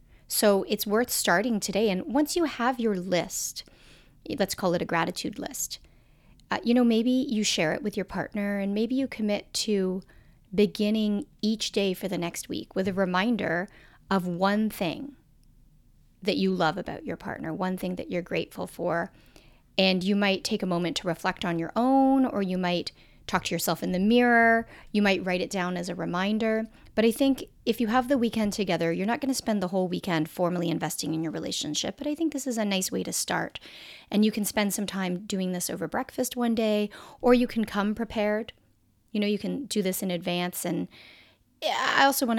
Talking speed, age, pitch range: 205 wpm, 30-49, 180-225 Hz